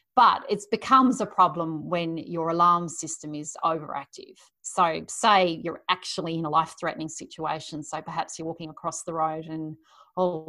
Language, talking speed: English, 160 wpm